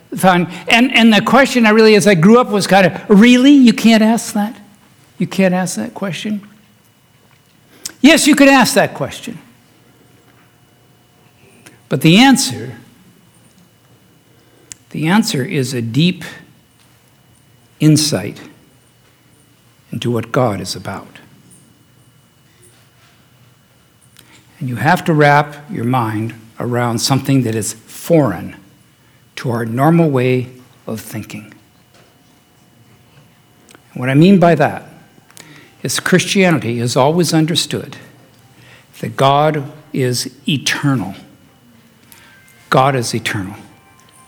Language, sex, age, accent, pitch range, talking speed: English, male, 60-79, American, 125-195 Hz, 105 wpm